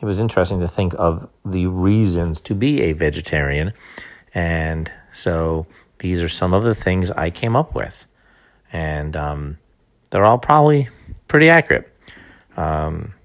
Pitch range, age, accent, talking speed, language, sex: 80-100 Hz, 40-59, American, 145 wpm, English, male